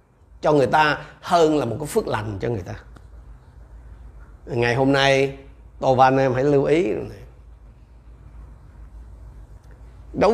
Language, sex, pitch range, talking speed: Vietnamese, male, 115-165 Hz, 135 wpm